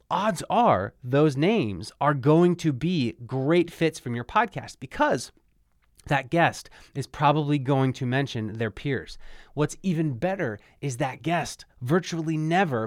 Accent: American